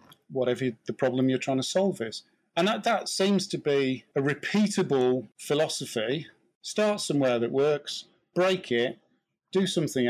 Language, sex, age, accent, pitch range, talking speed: English, male, 40-59, British, 130-170 Hz, 150 wpm